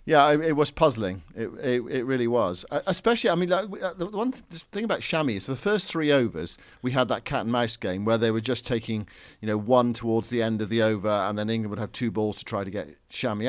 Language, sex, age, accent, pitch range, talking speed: English, male, 50-69, British, 105-135 Hz, 260 wpm